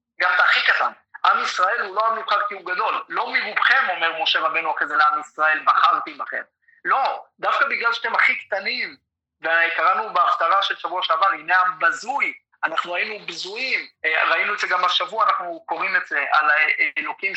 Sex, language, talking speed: male, Hebrew, 175 wpm